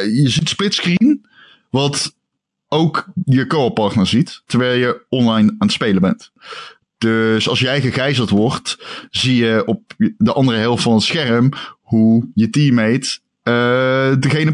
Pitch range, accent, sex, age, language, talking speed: 115-165 Hz, Dutch, male, 20-39, Dutch, 140 wpm